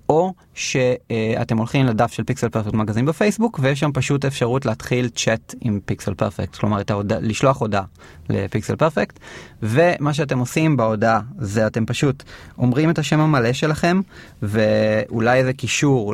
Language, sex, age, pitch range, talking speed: Hebrew, male, 20-39, 110-140 Hz, 145 wpm